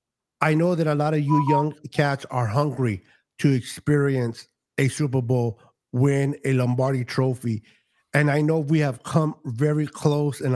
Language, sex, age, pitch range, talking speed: English, male, 50-69, 125-160 Hz, 165 wpm